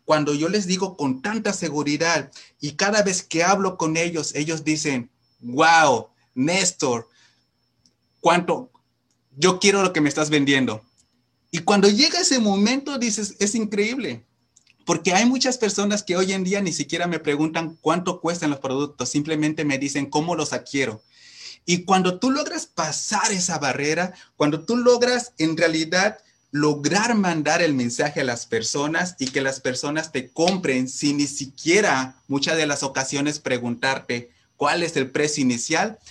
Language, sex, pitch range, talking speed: Spanish, male, 135-185 Hz, 155 wpm